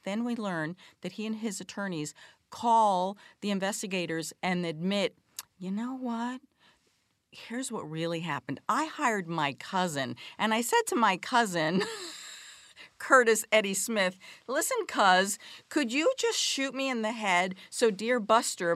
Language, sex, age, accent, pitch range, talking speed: English, female, 50-69, American, 185-255 Hz, 145 wpm